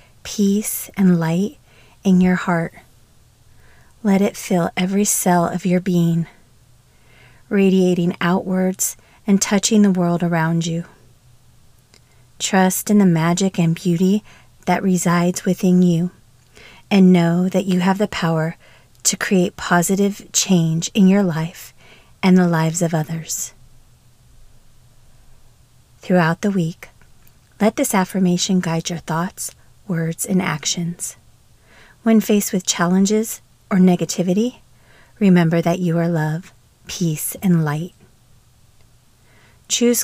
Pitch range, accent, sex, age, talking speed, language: 160-190 Hz, American, female, 30-49, 115 wpm, English